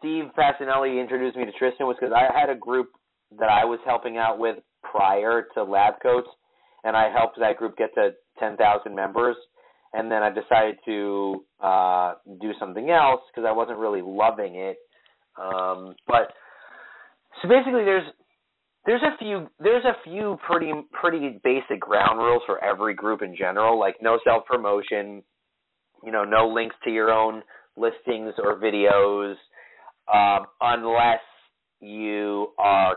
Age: 30-49